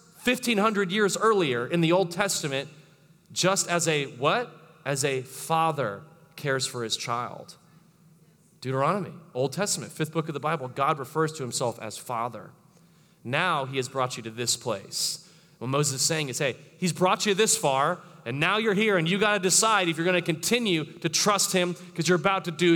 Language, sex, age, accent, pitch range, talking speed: English, male, 30-49, American, 165-225 Hz, 190 wpm